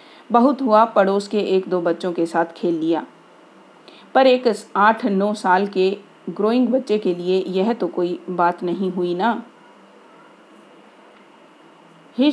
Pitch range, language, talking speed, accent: 180-235 Hz, Hindi, 140 wpm, native